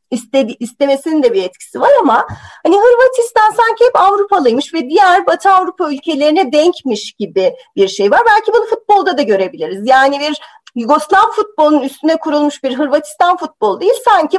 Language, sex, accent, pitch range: Turkish, female, native, 245-385 Hz